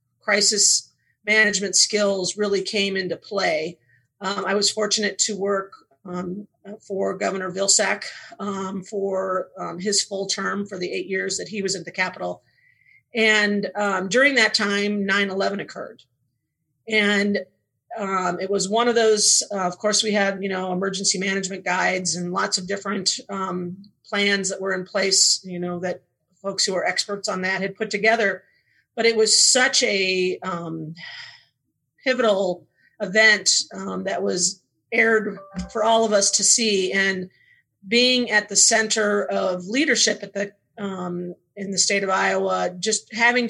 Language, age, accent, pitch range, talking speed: English, 40-59, American, 185-210 Hz, 155 wpm